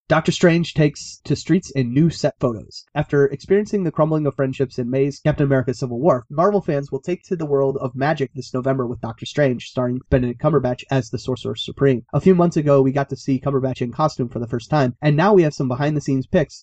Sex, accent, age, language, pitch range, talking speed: male, American, 30-49, English, 130-150 Hz, 240 wpm